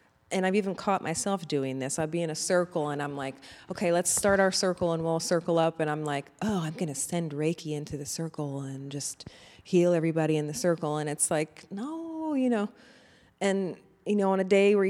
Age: 30-49